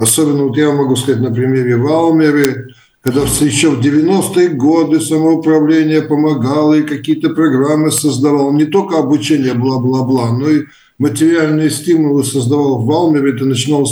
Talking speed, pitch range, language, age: 140 wpm, 125-150 Hz, Russian, 50-69